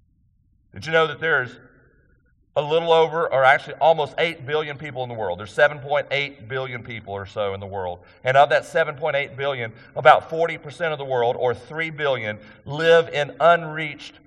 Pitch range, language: 120-160 Hz, English